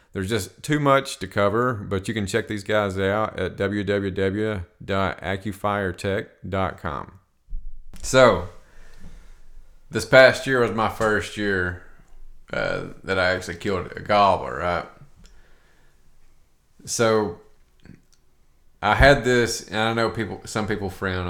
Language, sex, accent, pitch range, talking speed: English, male, American, 90-110 Hz, 120 wpm